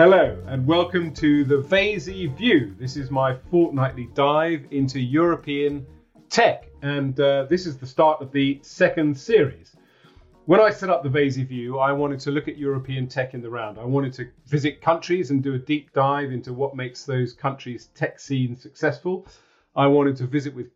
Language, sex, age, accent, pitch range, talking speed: English, male, 40-59, British, 130-160 Hz, 190 wpm